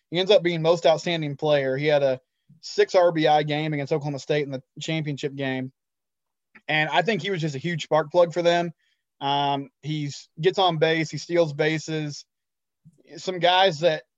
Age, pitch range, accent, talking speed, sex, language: 20-39, 145-170 Hz, American, 180 wpm, male, English